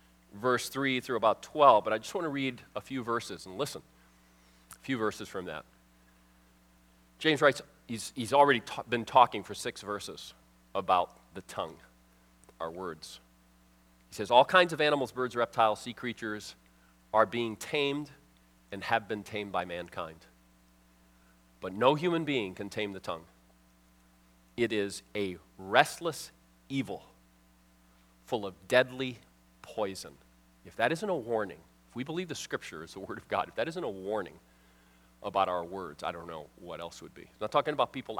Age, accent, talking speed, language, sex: 40-59, American, 170 wpm, English, male